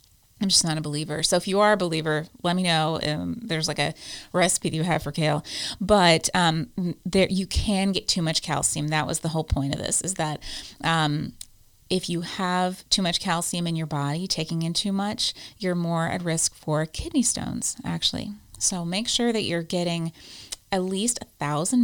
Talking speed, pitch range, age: 200 wpm, 155-200 Hz, 30-49